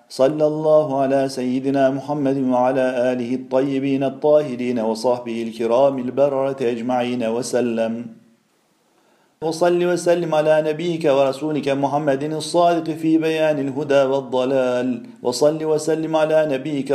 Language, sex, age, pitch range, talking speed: Turkish, male, 40-59, 130-155 Hz, 105 wpm